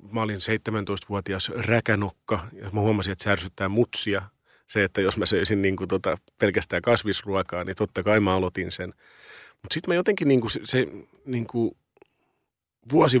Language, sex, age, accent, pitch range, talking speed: Finnish, male, 30-49, native, 95-110 Hz, 155 wpm